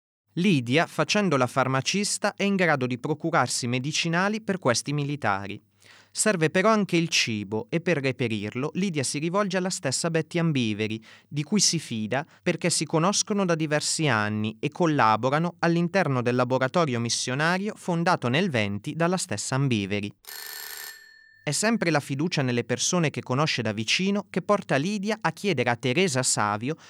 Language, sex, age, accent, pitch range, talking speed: Italian, male, 30-49, native, 120-180 Hz, 150 wpm